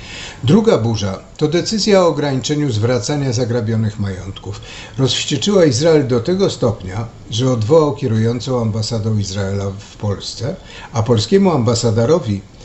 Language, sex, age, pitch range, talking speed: Polish, male, 60-79, 110-145 Hz, 115 wpm